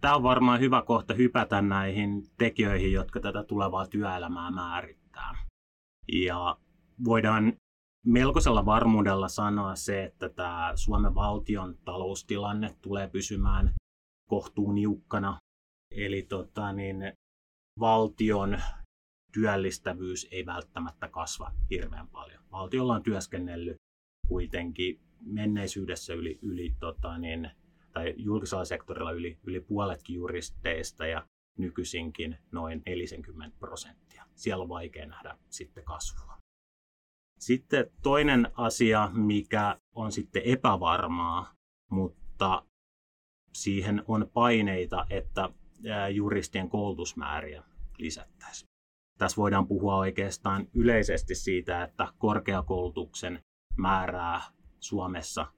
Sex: male